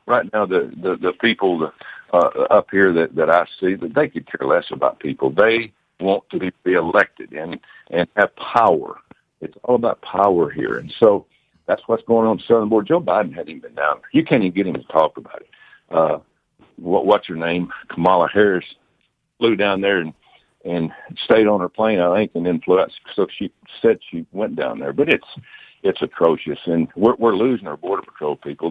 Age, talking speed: 60-79, 205 wpm